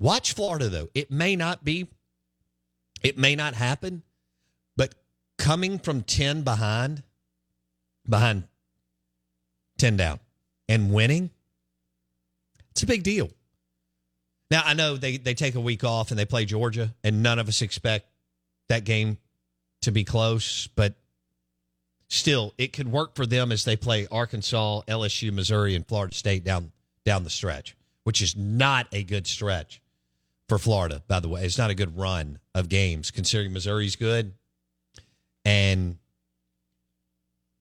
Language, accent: English, American